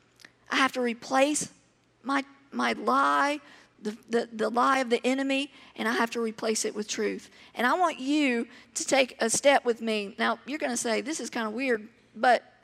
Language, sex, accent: English, female, American